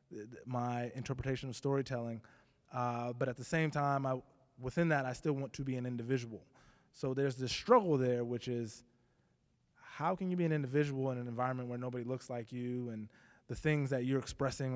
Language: English